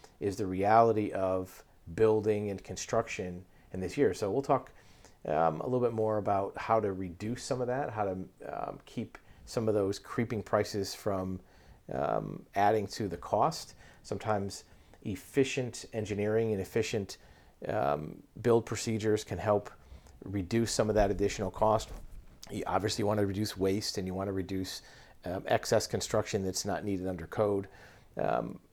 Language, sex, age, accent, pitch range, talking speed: English, male, 40-59, American, 95-105 Hz, 160 wpm